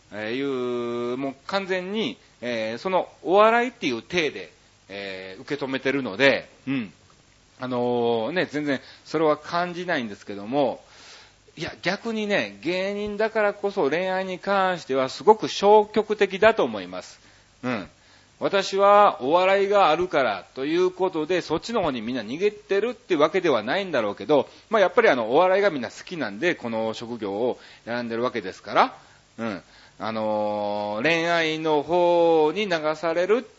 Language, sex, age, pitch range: Japanese, male, 40-59, 120-195 Hz